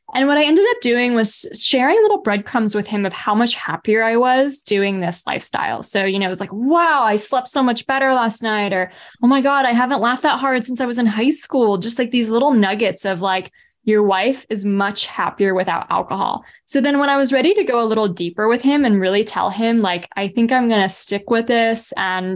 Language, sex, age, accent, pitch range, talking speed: English, female, 10-29, American, 195-240 Hz, 245 wpm